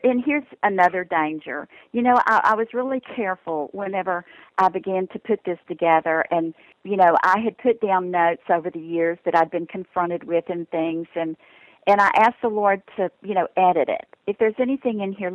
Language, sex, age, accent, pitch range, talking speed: English, female, 50-69, American, 170-210 Hz, 205 wpm